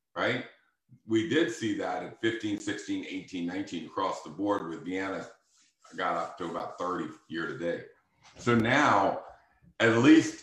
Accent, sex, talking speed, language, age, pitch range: American, male, 160 wpm, English, 50-69, 100-135 Hz